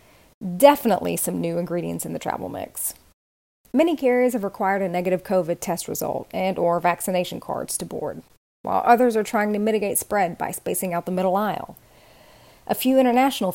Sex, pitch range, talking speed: female, 175-225 Hz, 175 wpm